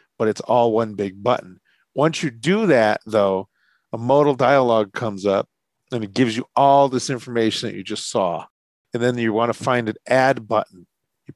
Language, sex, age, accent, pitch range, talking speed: English, male, 40-59, American, 110-130 Hz, 190 wpm